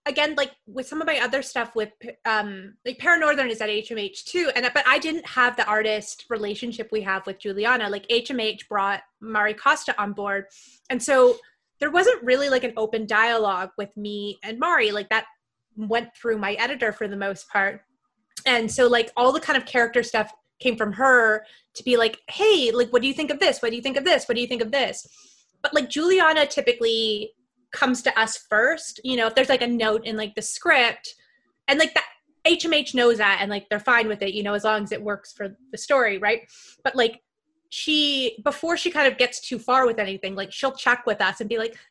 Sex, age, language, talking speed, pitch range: female, 20-39, English, 220 wpm, 215-280 Hz